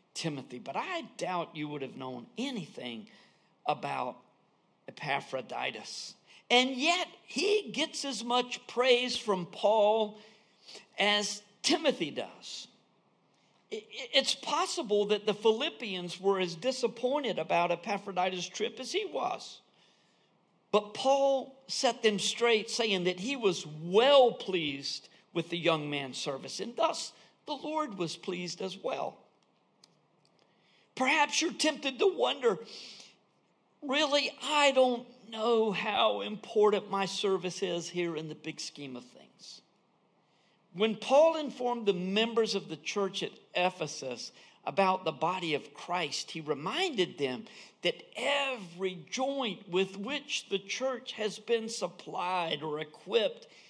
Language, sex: English, male